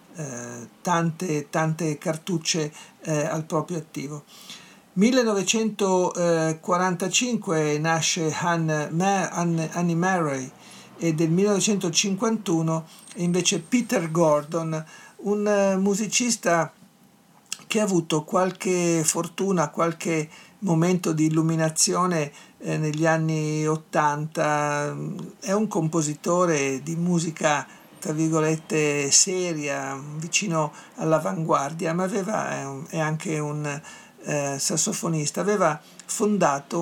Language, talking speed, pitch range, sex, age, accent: Italian, 90 wpm, 155-190 Hz, male, 50-69, native